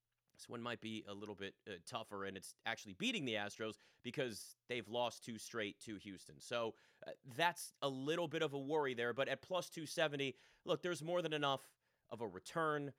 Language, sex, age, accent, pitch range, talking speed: English, male, 30-49, American, 120-155 Hz, 200 wpm